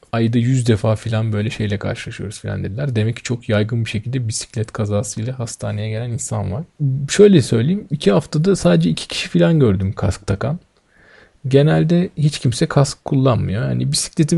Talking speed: 165 wpm